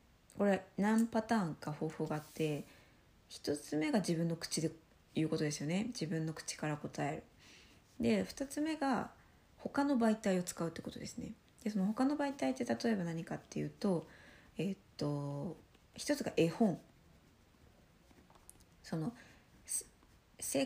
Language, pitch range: Japanese, 155-225 Hz